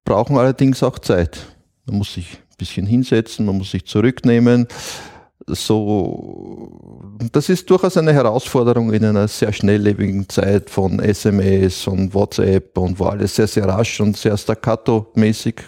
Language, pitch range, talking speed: German, 100-125 Hz, 145 wpm